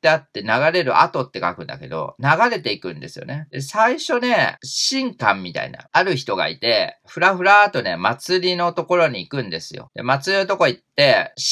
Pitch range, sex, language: 130-215 Hz, male, Japanese